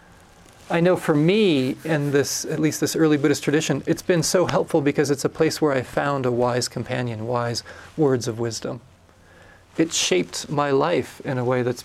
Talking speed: 185 wpm